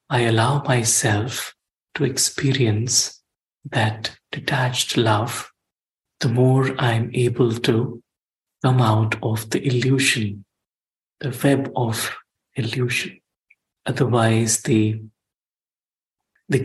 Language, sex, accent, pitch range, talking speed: English, male, Indian, 115-130 Hz, 90 wpm